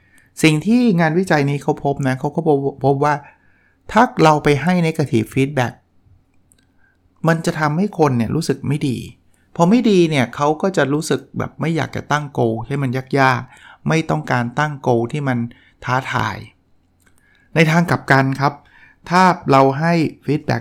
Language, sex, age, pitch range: Thai, male, 60-79, 125-155 Hz